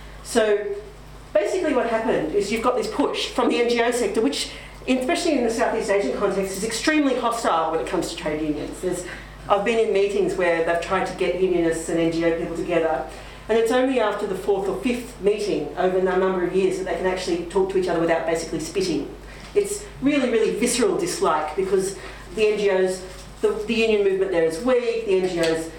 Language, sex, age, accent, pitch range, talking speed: English, female, 40-59, Australian, 170-225 Hz, 200 wpm